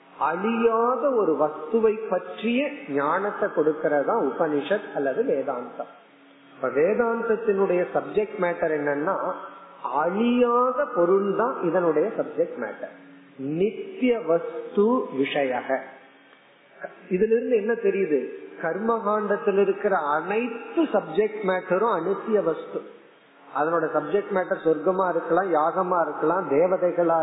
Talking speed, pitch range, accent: 85 wpm, 160-230 Hz, native